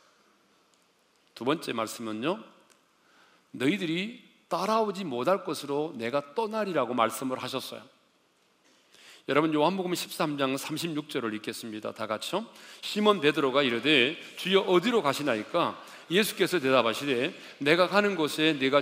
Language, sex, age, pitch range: Korean, male, 40-59, 150-205 Hz